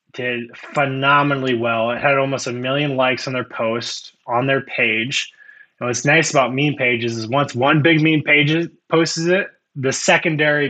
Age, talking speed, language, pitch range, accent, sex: 20-39, 175 wpm, English, 125-150 Hz, American, male